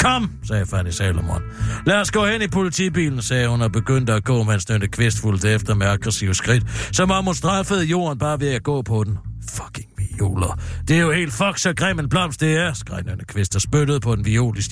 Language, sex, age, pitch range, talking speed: Danish, male, 60-79, 95-145 Hz, 230 wpm